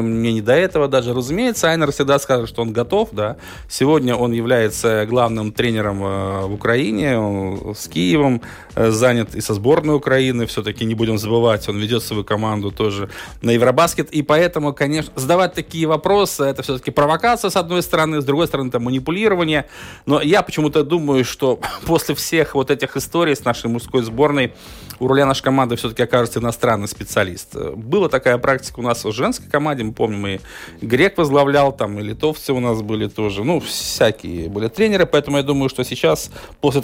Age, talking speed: 20-39, 175 wpm